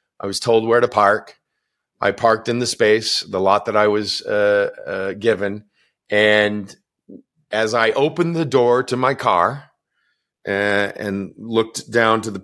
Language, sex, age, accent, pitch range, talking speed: English, male, 40-59, American, 115-160 Hz, 165 wpm